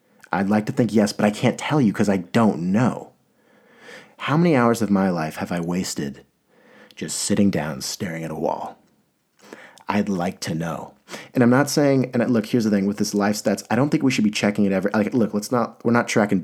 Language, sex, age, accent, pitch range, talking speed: English, male, 30-49, American, 100-120 Hz, 230 wpm